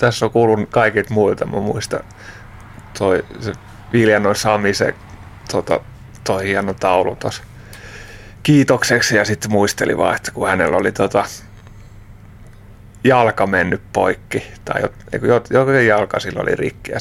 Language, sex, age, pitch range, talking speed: Finnish, male, 30-49, 100-110 Hz, 125 wpm